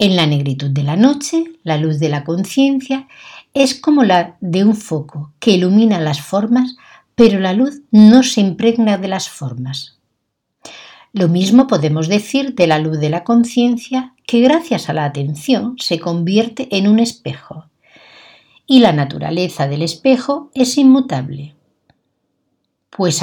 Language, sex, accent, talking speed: Spanish, female, Spanish, 150 wpm